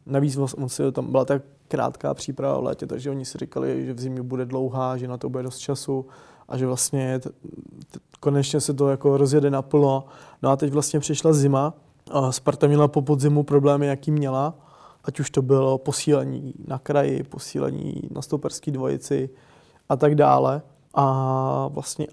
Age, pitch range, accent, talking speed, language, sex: 20-39, 135-145 Hz, native, 175 wpm, Czech, male